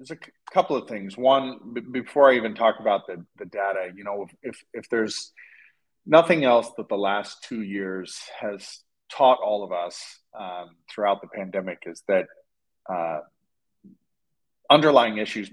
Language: English